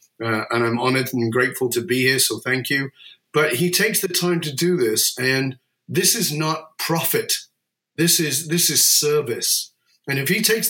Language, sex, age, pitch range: English, male, 30-49, 140-175 Hz